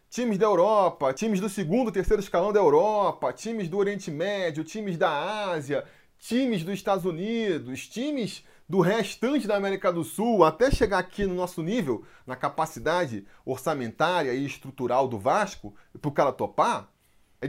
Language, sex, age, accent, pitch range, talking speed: Portuguese, male, 20-39, Brazilian, 150-215 Hz, 160 wpm